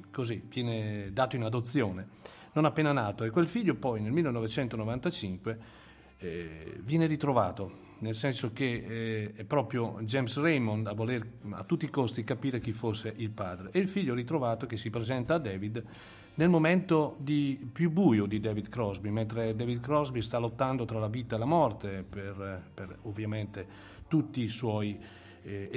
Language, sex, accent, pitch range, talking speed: Italian, male, native, 105-125 Hz, 165 wpm